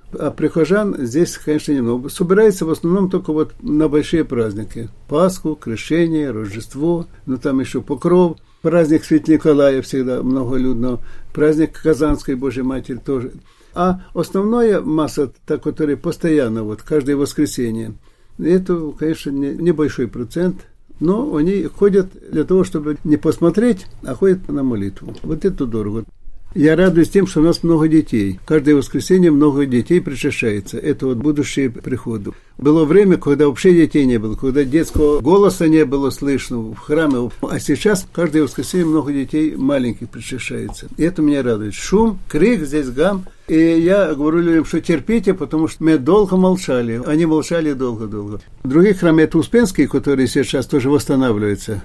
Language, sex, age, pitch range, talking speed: Russian, male, 60-79, 130-165 Hz, 150 wpm